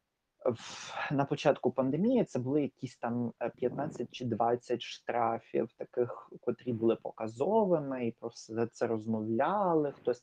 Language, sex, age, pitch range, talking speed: Ukrainian, male, 30-49, 120-150 Hz, 125 wpm